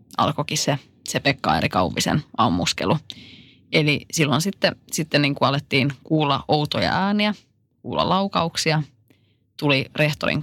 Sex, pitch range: female, 125-155 Hz